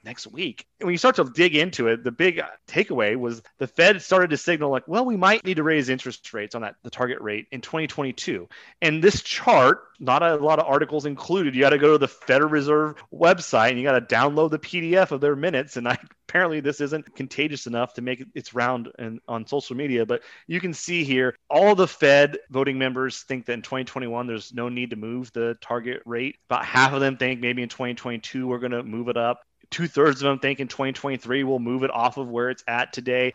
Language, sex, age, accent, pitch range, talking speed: English, male, 30-49, American, 120-145 Hz, 235 wpm